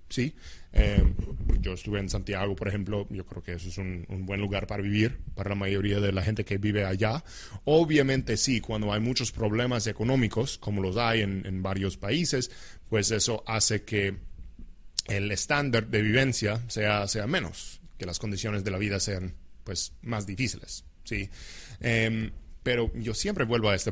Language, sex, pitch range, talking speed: English, male, 95-115 Hz, 180 wpm